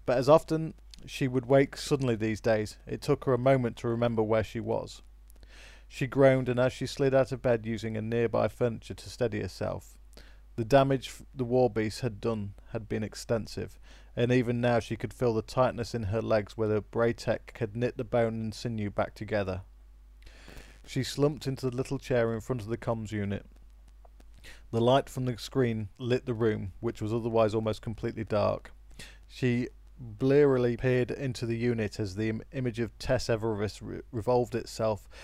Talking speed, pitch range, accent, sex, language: 185 wpm, 110-130 Hz, British, male, English